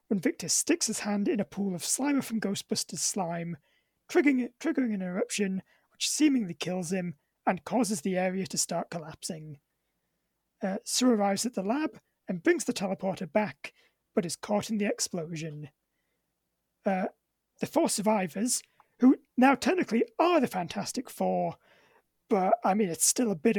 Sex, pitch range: male, 190-245 Hz